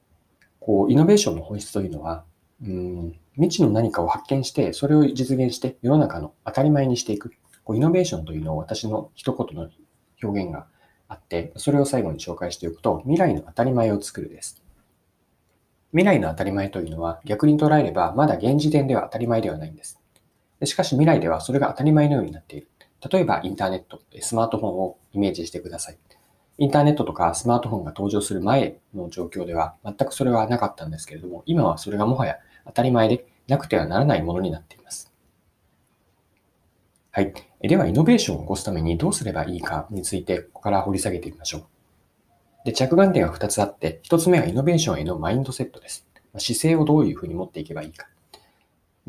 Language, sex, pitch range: Japanese, male, 90-140 Hz